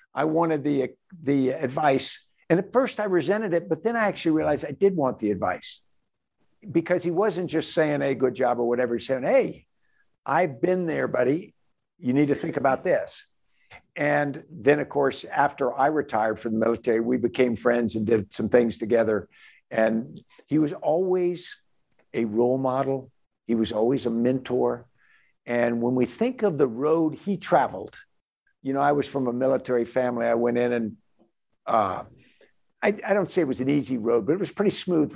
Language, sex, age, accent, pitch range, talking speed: English, male, 60-79, American, 120-160 Hz, 190 wpm